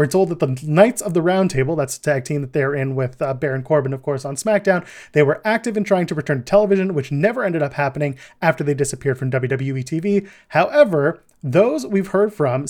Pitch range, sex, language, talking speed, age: 145-195 Hz, male, English, 225 wpm, 30-49